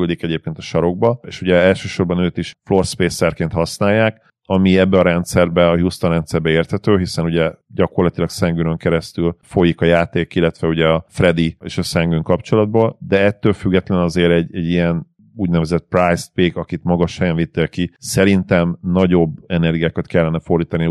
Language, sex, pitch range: Hungarian, male, 85-95 Hz